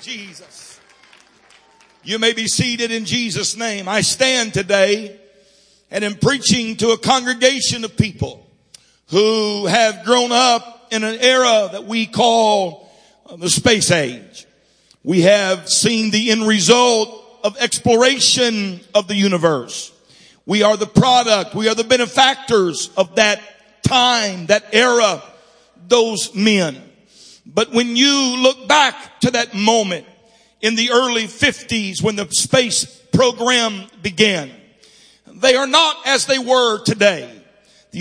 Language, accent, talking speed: English, American, 130 wpm